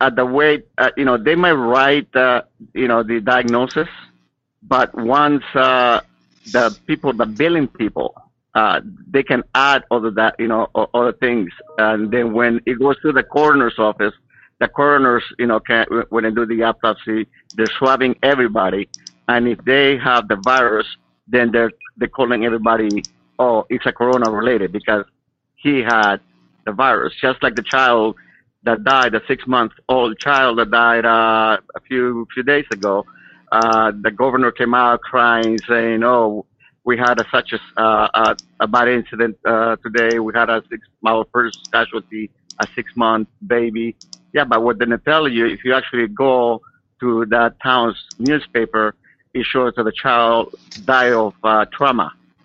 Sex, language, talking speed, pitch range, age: male, English, 170 wpm, 110-130 Hz, 50-69